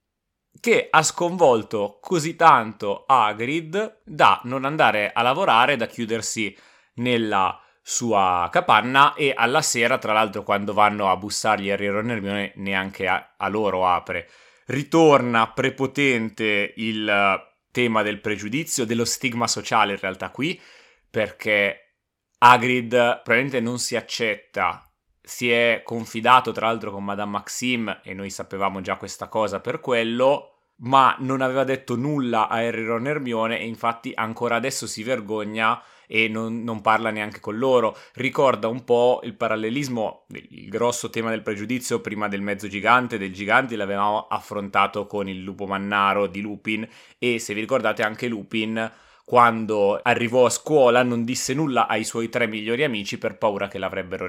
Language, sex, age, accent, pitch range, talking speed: Italian, male, 30-49, native, 105-125 Hz, 150 wpm